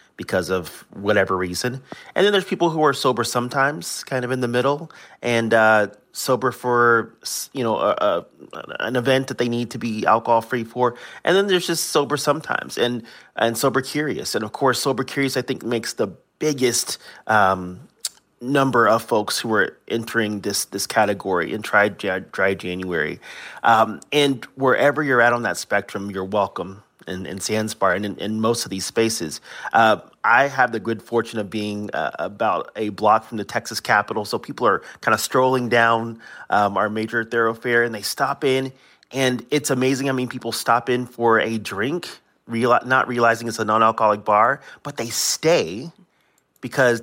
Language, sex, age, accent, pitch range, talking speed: English, male, 30-49, American, 110-130 Hz, 180 wpm